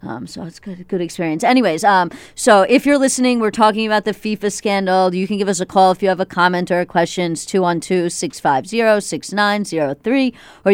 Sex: female